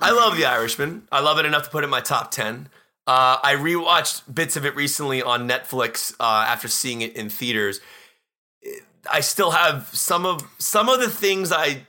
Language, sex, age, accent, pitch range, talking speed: English, male, 30-49, American, 115-150 Hz, 200 wpm